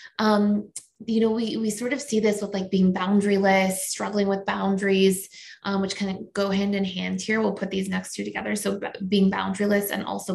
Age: 20-39